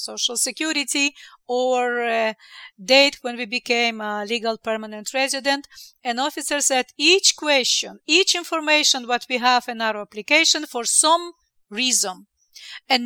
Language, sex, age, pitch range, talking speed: English, female, 40-59, 240-315 Hz, 135 wpm